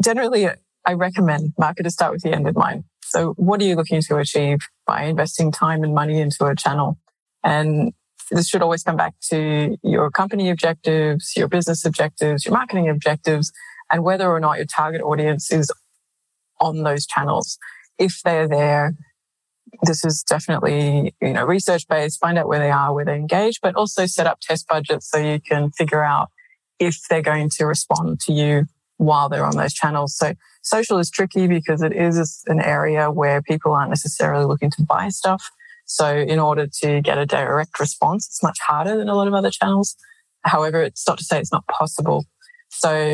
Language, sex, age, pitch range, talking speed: English, female, 20-39, 150-180 Hz, 190 wpm